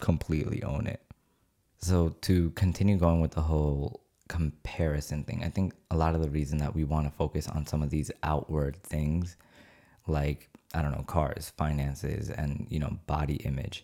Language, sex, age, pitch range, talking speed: English, male, 20-39, 75-95 Hz, 180 wpm